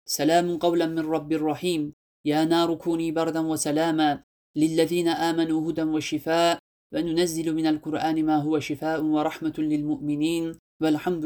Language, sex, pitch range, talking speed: Turkish, male, 150-170 Hz, 125 wpm